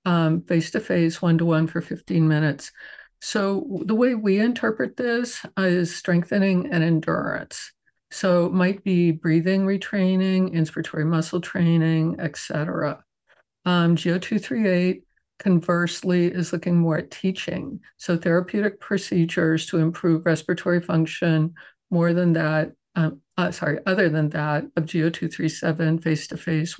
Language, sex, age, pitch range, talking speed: English, female, 50-69, 160-180 Hz, 115 wpm